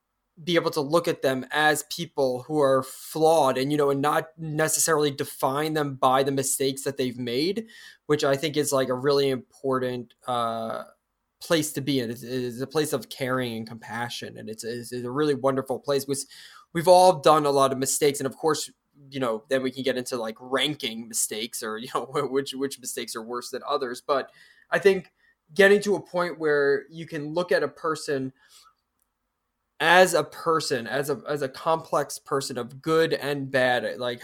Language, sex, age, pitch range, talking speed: English, male, 20-39, 125-150 Hz, 195 wpm